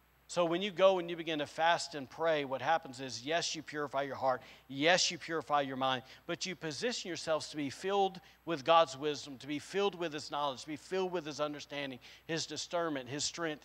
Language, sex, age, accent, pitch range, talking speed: English, male, 50-69, American, 135-170 Hz, 220 wpm